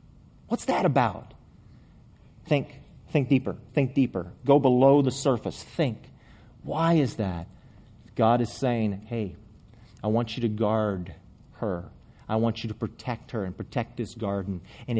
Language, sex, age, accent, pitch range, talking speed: English, male, 40-59, American, 105-130 Hz, 150 wpm